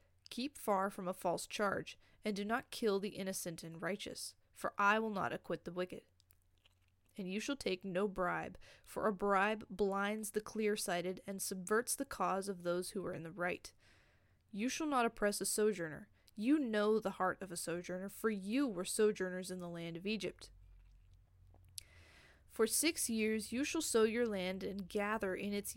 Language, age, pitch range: English, 20-39, 170-220 Hz